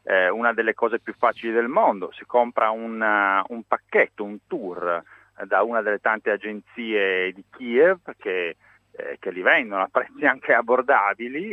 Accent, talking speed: native, 170 wpm